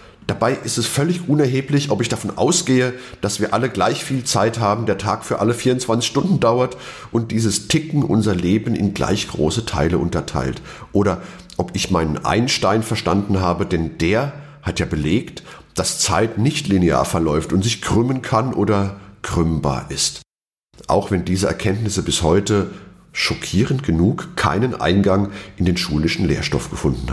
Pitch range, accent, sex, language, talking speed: 95-125 Hz, German, male, German, 160 wpm